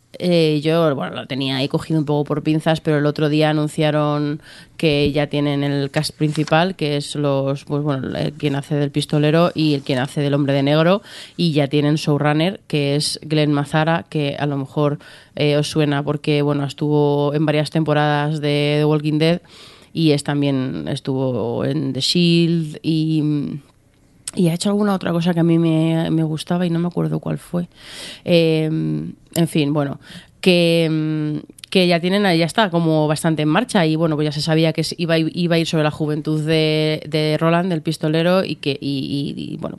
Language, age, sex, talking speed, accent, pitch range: Spanish, 30-49, female, 195 wpm, Spanish, 150-175 Hz